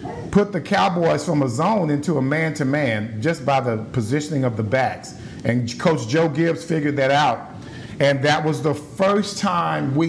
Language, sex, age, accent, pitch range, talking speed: English, male, 50-69, American, 135-170 Hz, 190 wpm